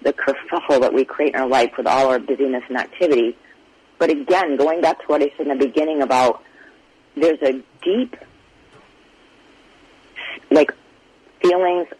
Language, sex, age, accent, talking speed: English, female, 40-59, American, 155 wpm